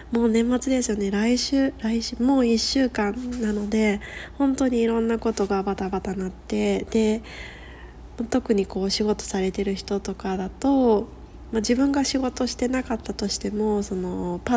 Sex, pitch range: female, 195-235 Hz